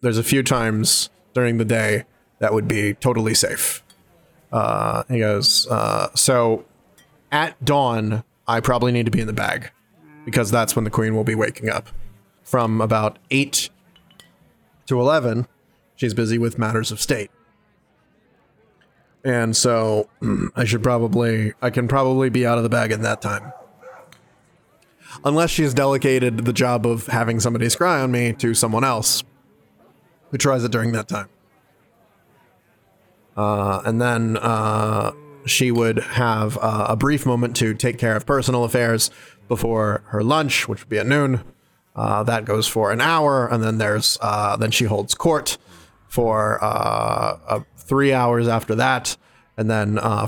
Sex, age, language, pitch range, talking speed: male, 20-39, English, 110-130 Hz, 160 wpm